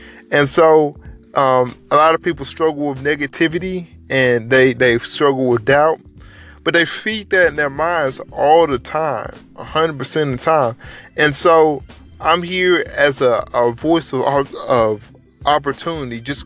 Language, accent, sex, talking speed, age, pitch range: English, American, male, 155 wpm, 20-39, 130-160 Hz